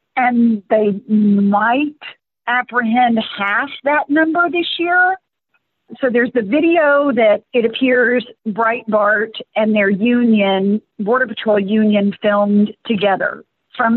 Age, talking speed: 50-69, 110 wpm